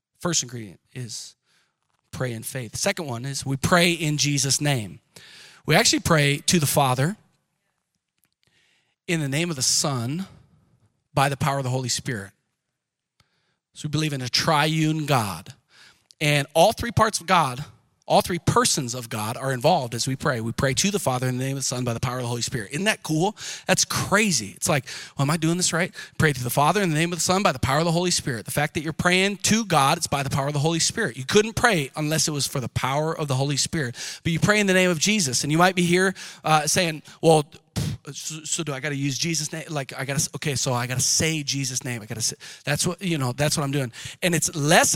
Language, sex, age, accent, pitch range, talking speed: English, male, 40-59, American, 135-175 Hz, 245 wpm